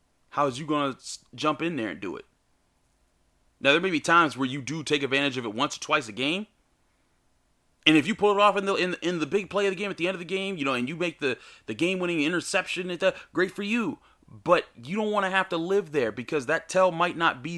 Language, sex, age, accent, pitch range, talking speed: English, male, 30-49, American, 110-170 Hz, 270 wpm